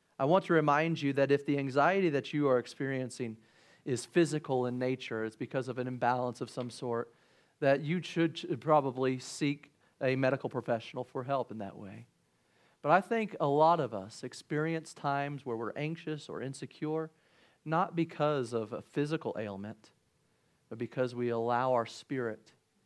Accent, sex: American, male